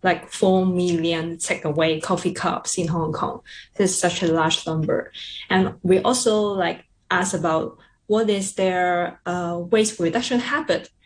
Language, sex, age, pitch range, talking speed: English, female, 20-39, 165-200 Hz, 150 wpm